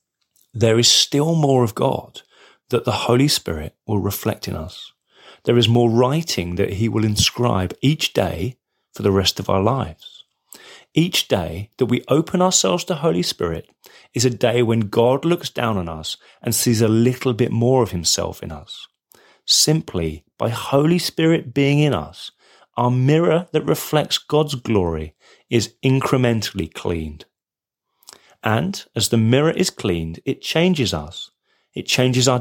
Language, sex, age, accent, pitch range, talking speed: English, male, 30-49, British, 95-135 Hz, 160 wpm